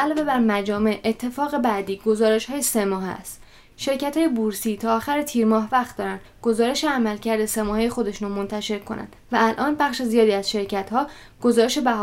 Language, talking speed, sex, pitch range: Persian, 175 wpm, female, 205-240 Hz